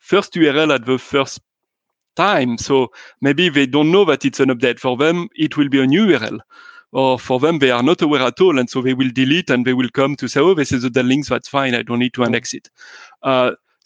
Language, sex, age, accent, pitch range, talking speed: English, male, 30-49, French, 130-150 Hz, 250 wpm